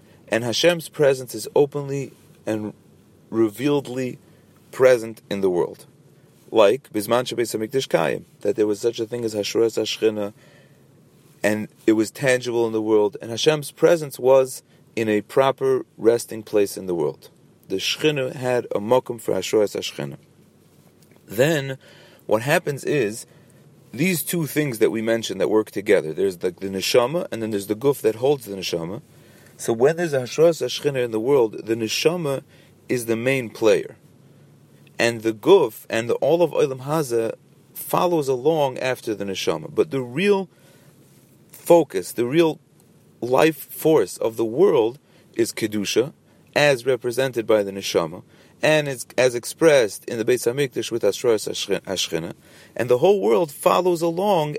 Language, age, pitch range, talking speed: English, 40-59, 115-165 Hz, 150 wpm